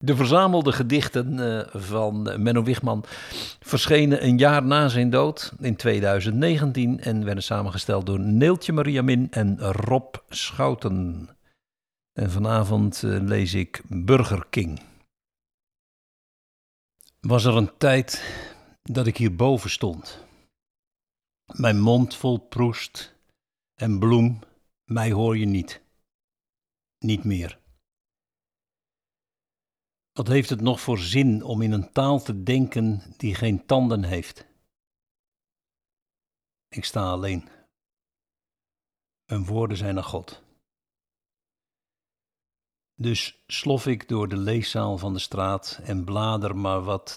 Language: Dutch